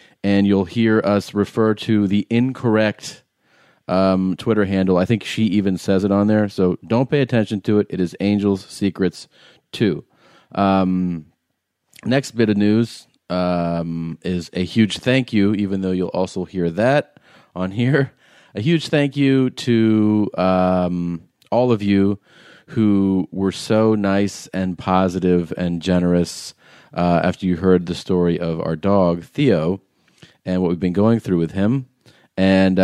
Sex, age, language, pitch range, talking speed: male, 30-49, English, 90-110 Hz, 155 wpm